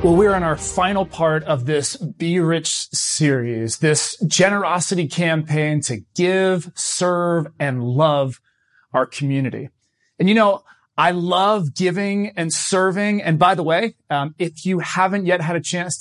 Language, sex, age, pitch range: English, male, 30-49, 145-190 Hz